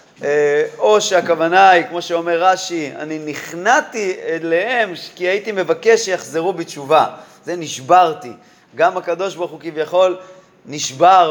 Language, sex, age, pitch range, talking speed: Hebrew, male, 30-49, 160-195 Hz, 115 wpm